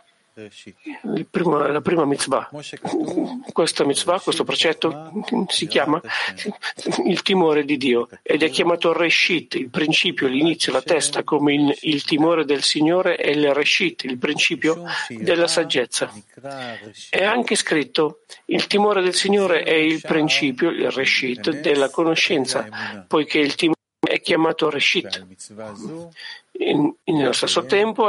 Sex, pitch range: male, 145-205 Hz